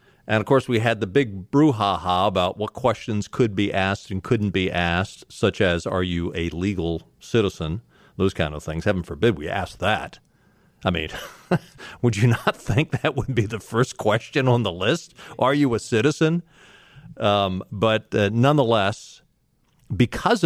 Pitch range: 100-120 Hz